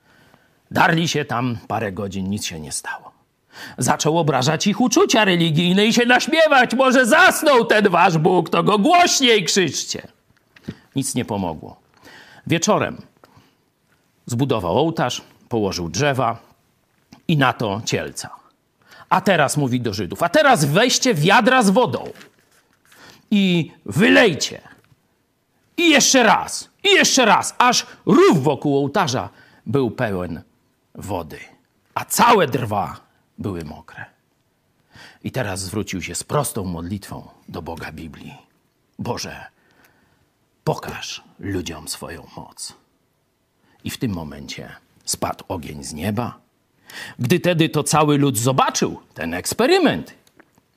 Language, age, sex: Polish, 50-69, male